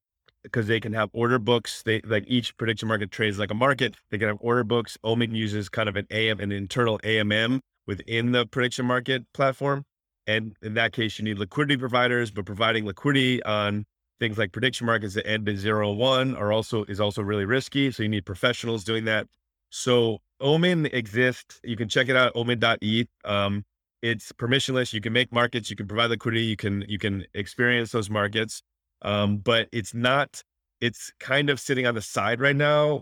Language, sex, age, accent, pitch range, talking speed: English, male, 30-49, American, 105-120 Hz, 195 wpm